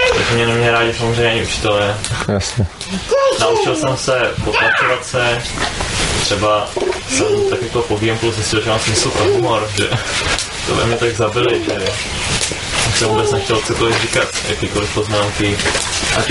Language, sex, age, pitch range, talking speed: Czech, male, 20-39, 105-120 Hz, 145 wpm